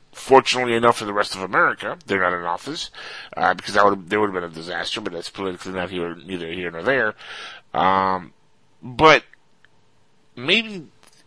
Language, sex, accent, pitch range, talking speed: English, male, American, 95-115 Hz, 175 wpm